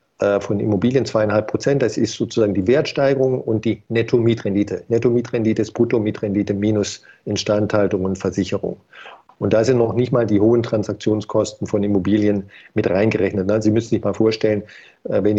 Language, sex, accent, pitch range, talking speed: German, male, German, 105-115 Hz, 150 wpm